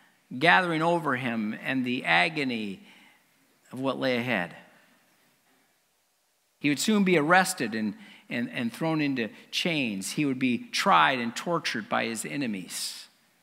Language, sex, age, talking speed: English, male, 50-69, 135 wpm